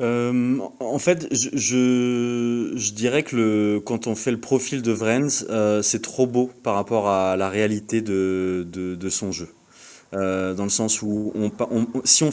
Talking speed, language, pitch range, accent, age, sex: 190 wpm, French, 95-125 Hz, French, 20-39, male